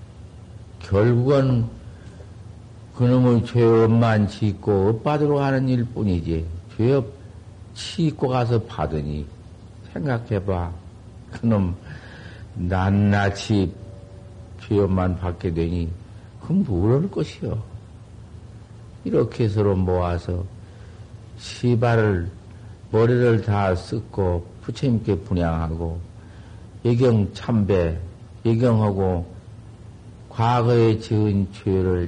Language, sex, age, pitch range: Korean, male, 50-69, 95-115 Hz